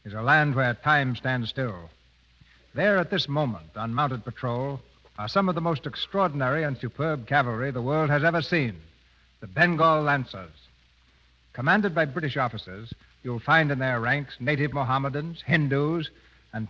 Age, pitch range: 60-79, 110-155 Hz